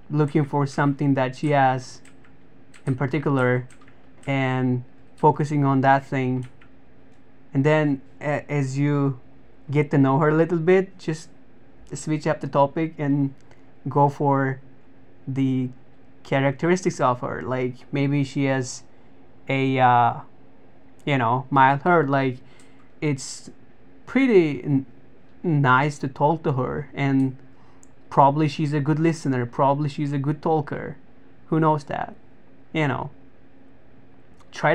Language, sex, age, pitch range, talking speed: English, male, 20-39, 135-165 Hz, 125 wpm